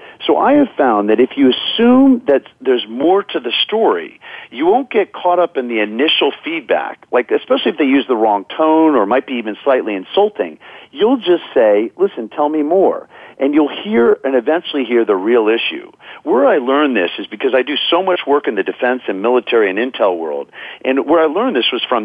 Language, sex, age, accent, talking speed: English, male, 50-69, American, 215 wpm